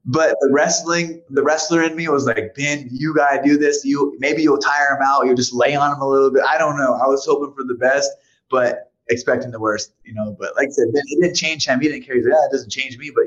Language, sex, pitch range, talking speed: English, male, 115-175 Hz, 290 wpm